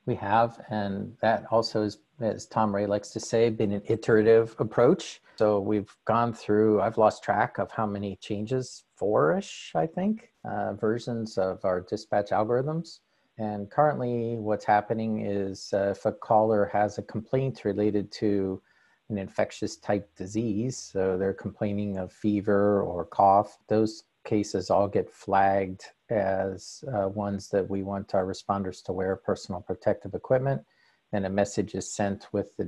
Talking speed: 160 wpm